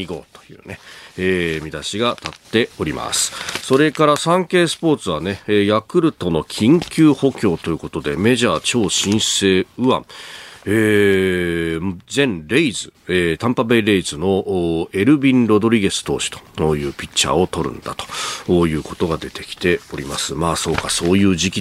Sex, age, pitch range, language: male, 40-59, 90-140 Hz, Japanese